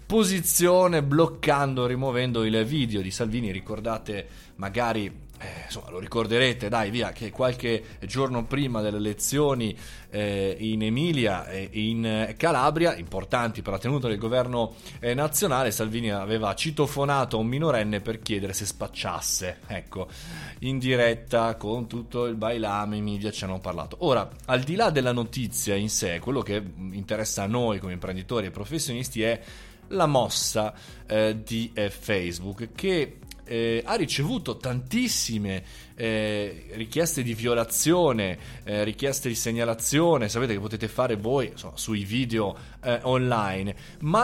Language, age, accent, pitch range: Italian, 20-39, native, 105-130 Hz